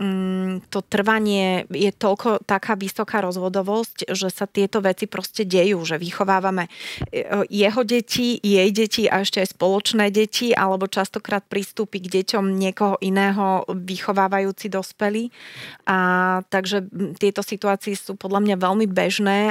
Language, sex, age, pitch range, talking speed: Slovak, female, 30-49, 185-200 Hz, 125 wpm